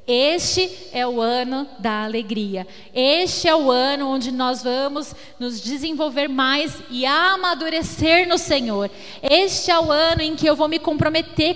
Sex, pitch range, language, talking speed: female, 225-295 Hz, Portuguese, 155 wpm